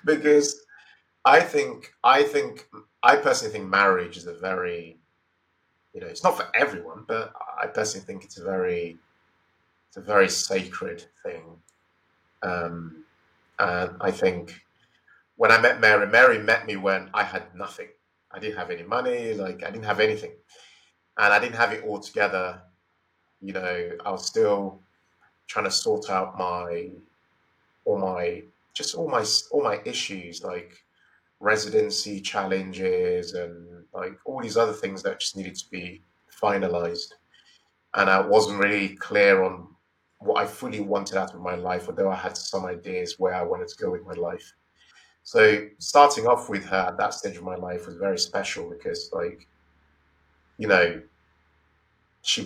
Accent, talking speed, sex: British, 160 wpm, male